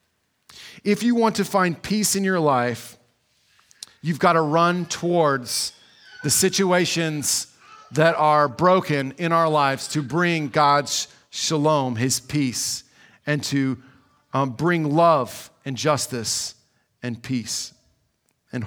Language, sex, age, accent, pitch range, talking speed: English, male, 40-59, American, 145-215 Hz, 120 wpm